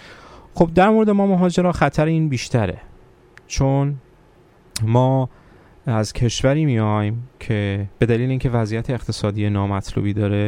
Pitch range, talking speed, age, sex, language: 110-140 Hz, 120 wpm, 30-49, male, Persian